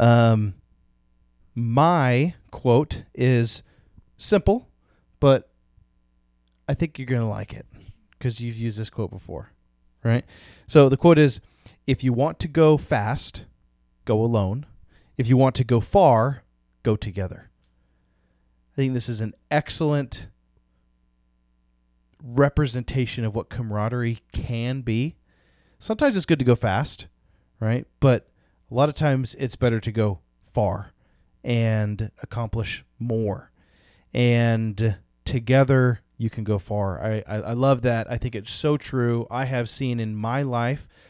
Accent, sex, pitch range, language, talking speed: American, male, 105-130 Hz, English, 135 wpm